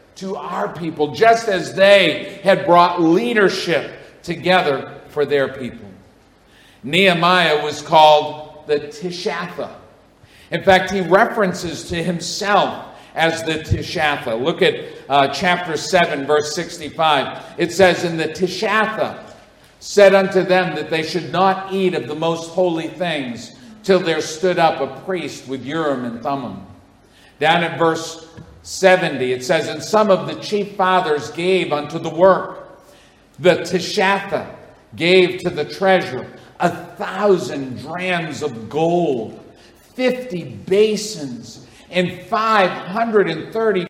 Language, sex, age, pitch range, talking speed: English, male, 50-69, 150-195 Hz, 125 wpm